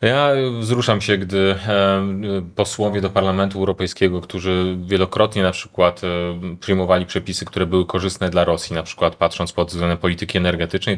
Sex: male